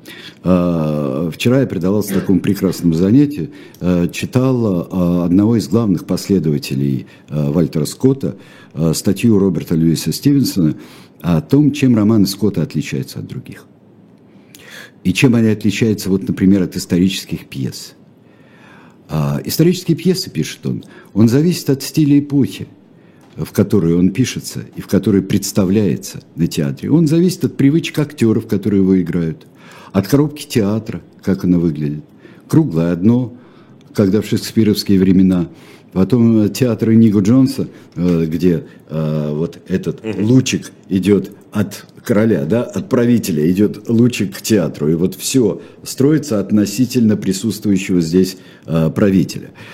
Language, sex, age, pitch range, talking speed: Russian, male, 60-79, 90-120 Hz, 120 wpm